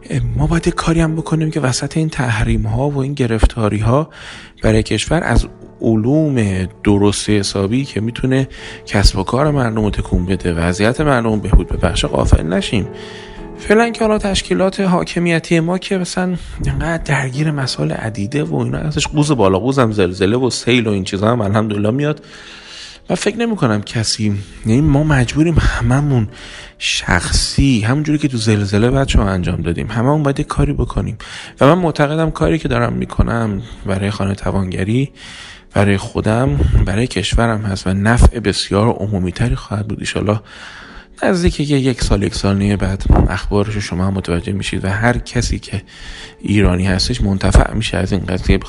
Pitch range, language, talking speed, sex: 95-135 Hz, Persian, 160 wpm, male